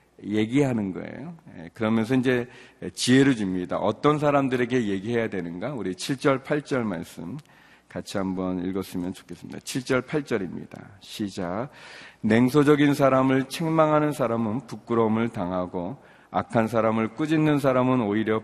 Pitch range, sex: 105-145 Hz, male